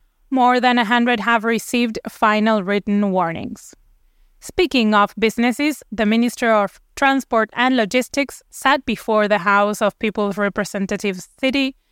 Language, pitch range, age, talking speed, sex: English, 205-255 Hz, 20-39, 130 wpm, female